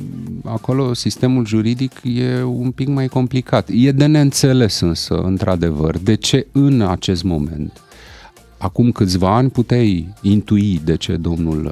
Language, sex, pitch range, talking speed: Romanian, male, 95-125 Hz, 135 wpm